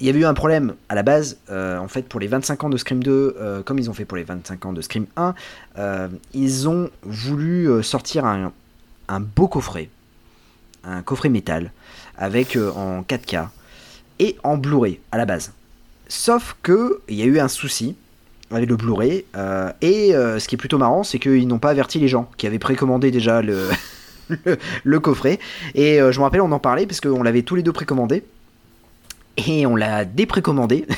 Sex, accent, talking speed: male, French, 205 wpm